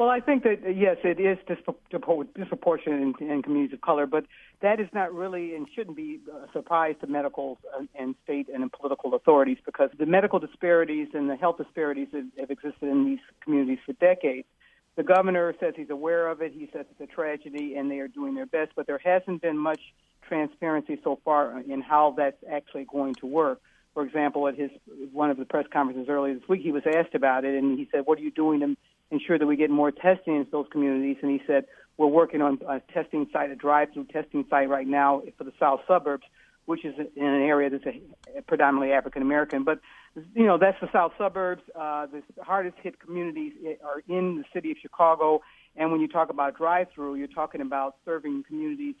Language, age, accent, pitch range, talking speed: English, 60-79, American, 140-175 Hz, 205 wpm